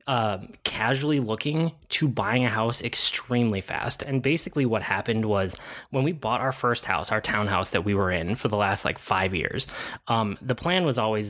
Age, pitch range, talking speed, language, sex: 20-39, 105-130 Hz, 195 wpm, English, male